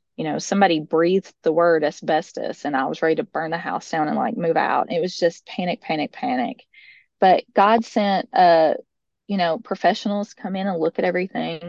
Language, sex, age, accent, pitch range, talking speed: English, female, 20-39, American, 165-205 Hz, 200 wpm